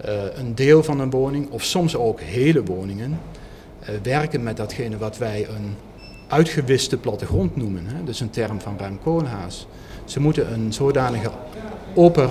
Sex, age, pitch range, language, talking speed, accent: male, 40-59, 105-150 Hz, Dutch, 160 wpm, Dutch